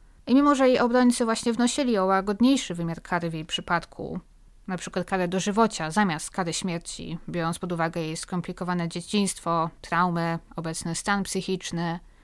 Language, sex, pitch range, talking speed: Polish, female, 180-240 Hz, 150 wpm